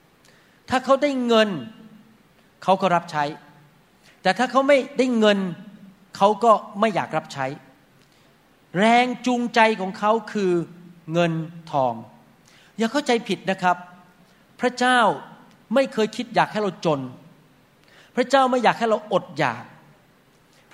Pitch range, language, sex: 165-220 Hz, Thai, male